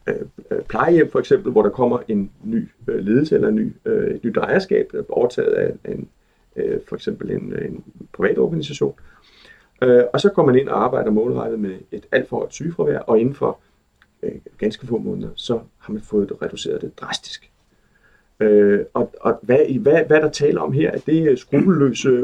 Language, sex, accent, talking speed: Danish, male, native, 190 wpm